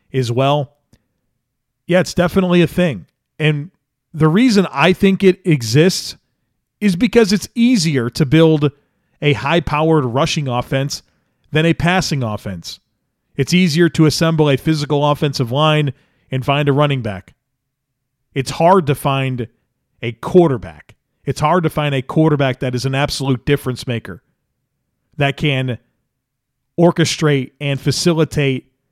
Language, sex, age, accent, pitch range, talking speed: English, male, 40-59, American, 135-170 Hz, 135 wpm